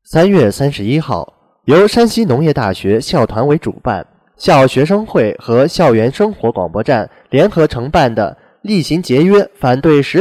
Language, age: Chinese, 20-39